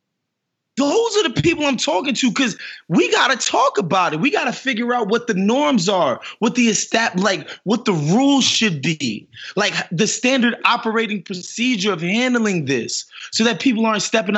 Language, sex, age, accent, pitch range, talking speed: English, male, 20-39, American, 195-245 Hz, 175 wpm